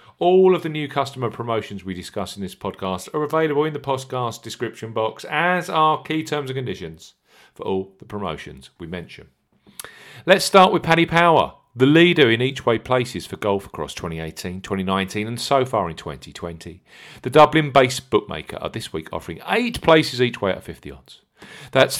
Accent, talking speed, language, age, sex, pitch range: British, 180 wpm, English, 40-59, male, 95-150 Hz